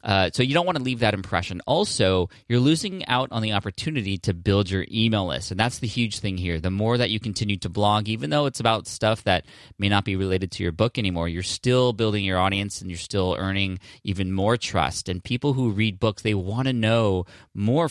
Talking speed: 235 wpm